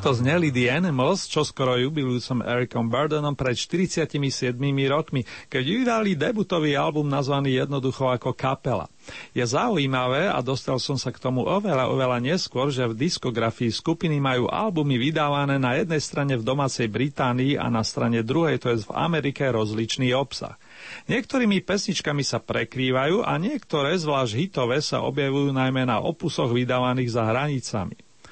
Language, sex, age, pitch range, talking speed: Slovak, male, 40-59, 125-165 Hz, 150 wpm